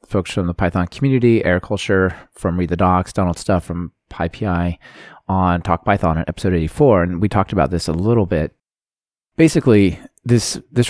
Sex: male